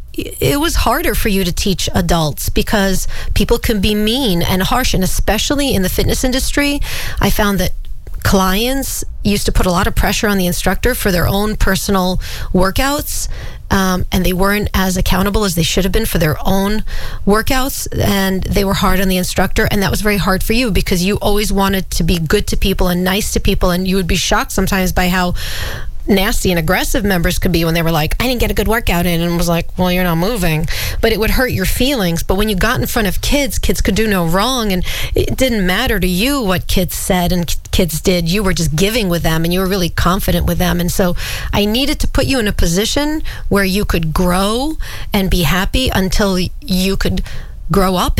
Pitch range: 180-210 Hz